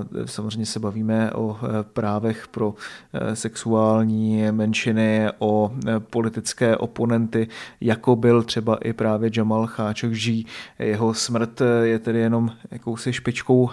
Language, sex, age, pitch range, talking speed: Czech, male, 30-49, 115-130 Hz, 115 wpm